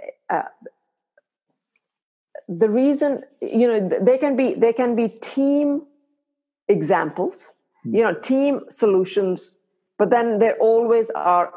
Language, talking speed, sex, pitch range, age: English, 115 wpm, female, 175-235 Hz, 50-69